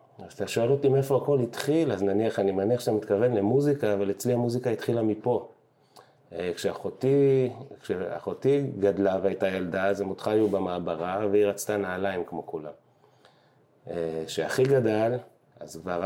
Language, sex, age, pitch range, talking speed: Hebrew, male, 30-49, 95-120 Hz, 140 wpm